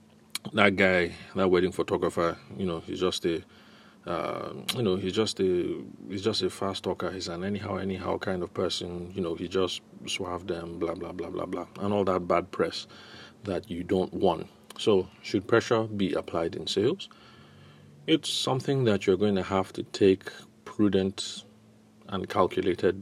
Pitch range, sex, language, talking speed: 90-105 Hz, male, English, 175 wpm